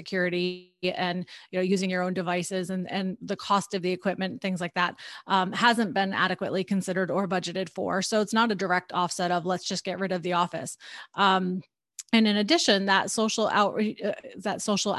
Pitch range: 185-215 Hz